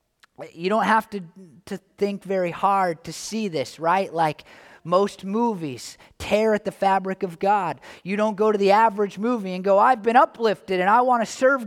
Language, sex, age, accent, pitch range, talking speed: English, male, 30-49, American, 185-210 Hz, 195 wpm